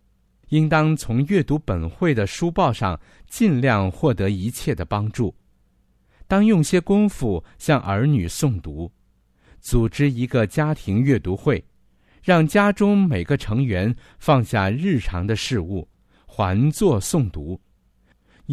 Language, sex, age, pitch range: Chinese, male, 50-69, 95-145 Hz